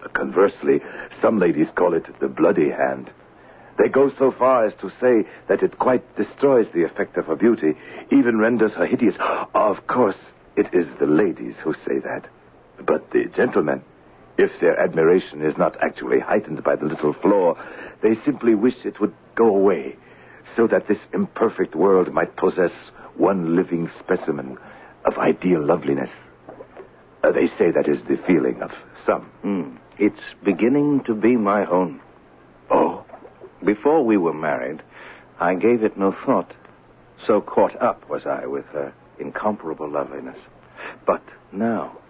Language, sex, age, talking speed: English, male, 60-79, 155 wpm